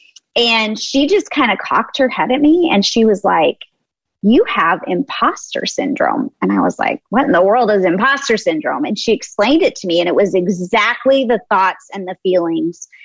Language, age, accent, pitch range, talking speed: English, 30-49, American, 185-245 Hz, 200 wpm